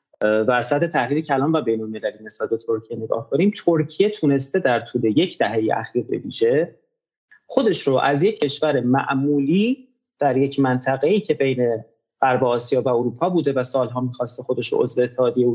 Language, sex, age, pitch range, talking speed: Persian, male, 30-49, 130-195 Hz, 160 wpm